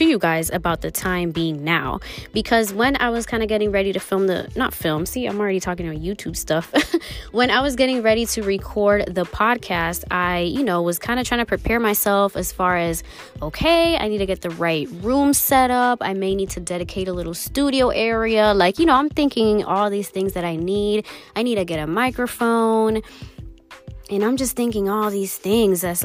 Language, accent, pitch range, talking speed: English, American, 175-220 Hz, 215 wpm